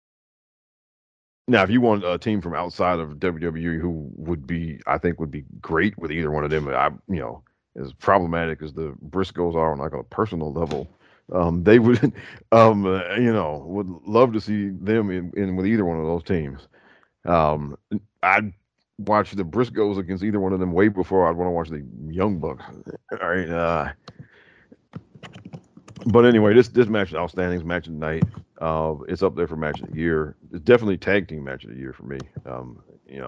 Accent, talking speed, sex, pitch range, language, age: American, 205 wpm, male, 80-105 Hz, English, 40-59